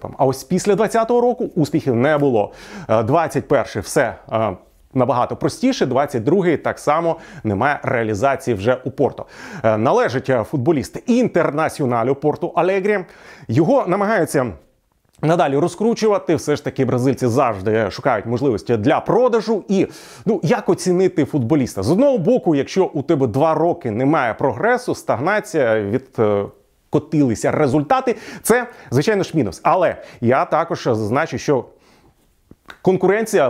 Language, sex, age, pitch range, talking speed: Ukrainian, male, 30-49, 130-195 Hz, 125 wpm